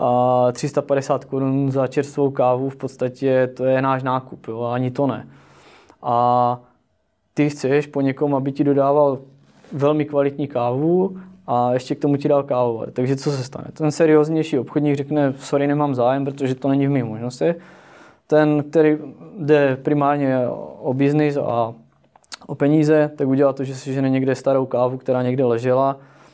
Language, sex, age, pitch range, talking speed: Czech, male, 20-39, 125-145 Hz, 165 wpm